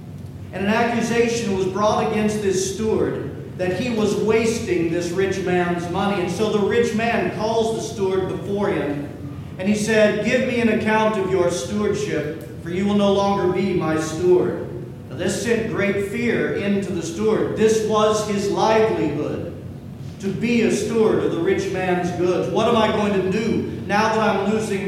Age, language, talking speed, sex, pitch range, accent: 40-59, English, 180 wpm, male, 175-215 Hz, American